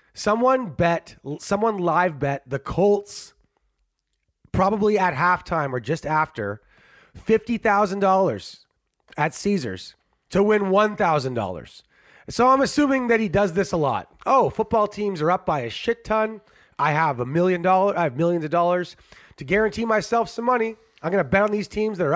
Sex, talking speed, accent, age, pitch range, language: male, 165 wpm, American, 30-49, 160-220 Hz, English